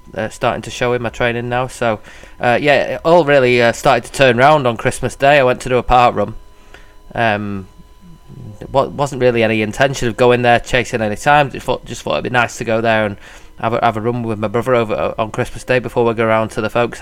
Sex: male